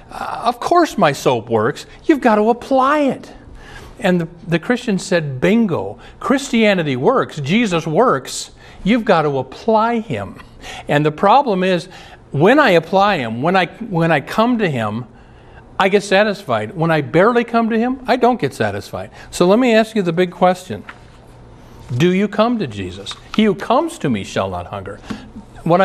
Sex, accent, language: male, American, English